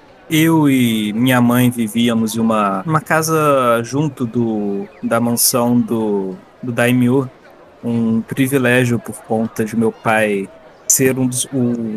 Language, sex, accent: Portuguese, male, Brazilian